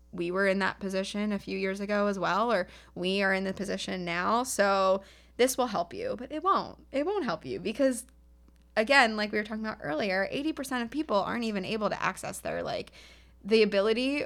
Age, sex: 20-39, female